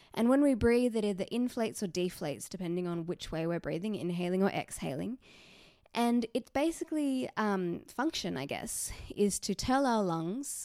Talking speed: 170 wpm